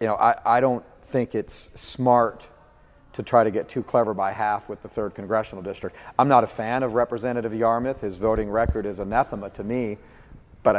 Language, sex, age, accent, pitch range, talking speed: English, male, 40-59, American, 105-120 Hz, 200 wpm